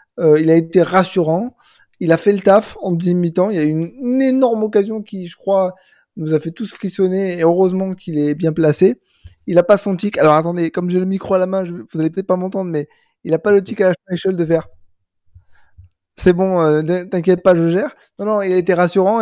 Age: 20-39